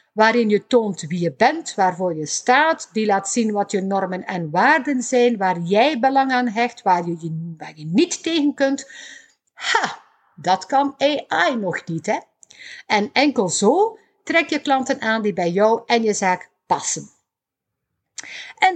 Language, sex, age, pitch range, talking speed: Dutch, female, 50-69, 190-265 Hz, 165 wpm